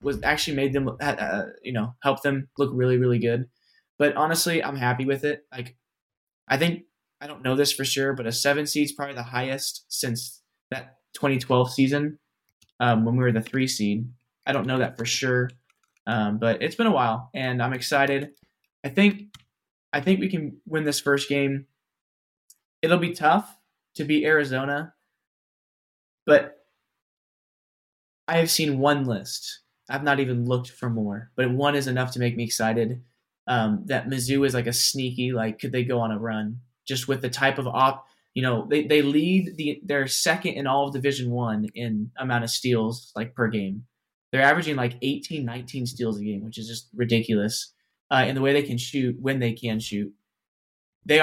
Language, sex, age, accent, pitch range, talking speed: English, male, 20-39, American, 120-140 Hz, 185 wpm